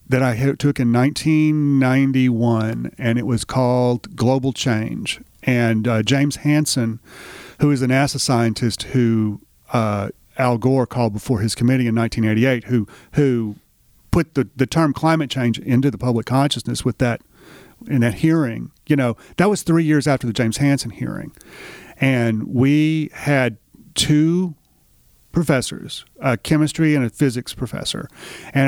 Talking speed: 145 wpm